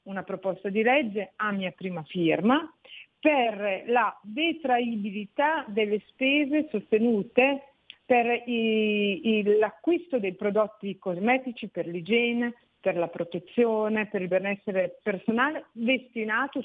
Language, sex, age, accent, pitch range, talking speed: Italian, female, 40-59, native, 185-235 Hz, 110 wpm